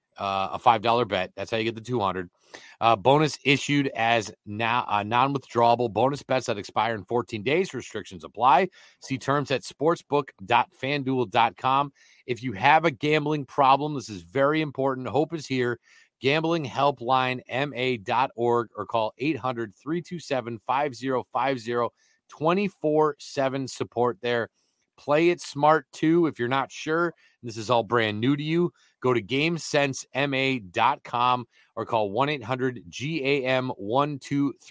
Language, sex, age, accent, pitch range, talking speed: English, male, 30-49, American, 115-140 Hz, 135 wpm